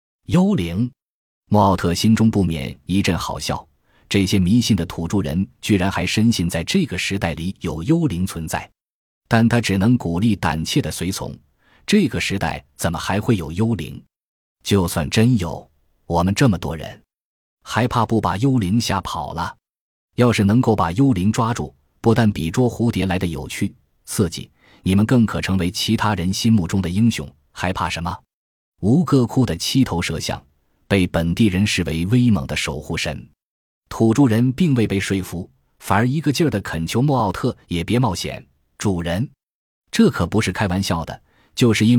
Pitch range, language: 85-115 Hz, Chinese